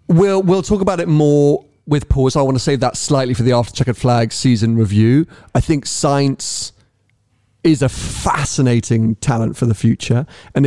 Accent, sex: British, male